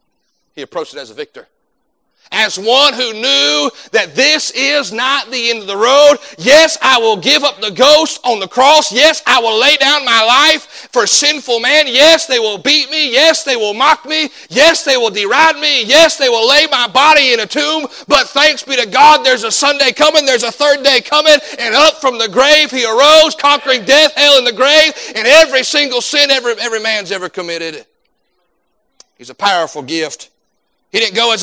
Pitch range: 220-295 Hz